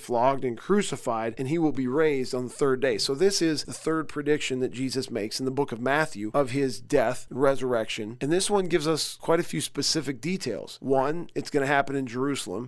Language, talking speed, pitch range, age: English, 225 wpm, 125-150 Hz, 40-59